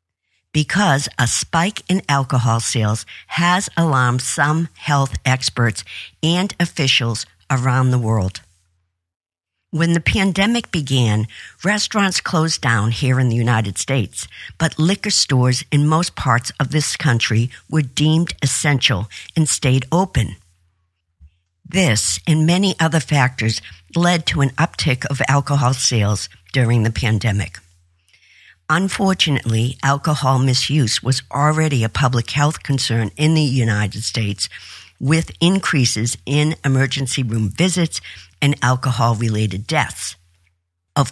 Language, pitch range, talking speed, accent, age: English, 110-155 Hz, 120 wpm, American, 60-79